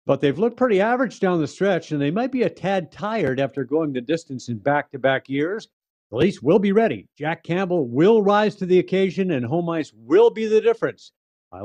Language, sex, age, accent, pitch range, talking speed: English, male, 50-69, American, 130-165 Hz, 225 wpm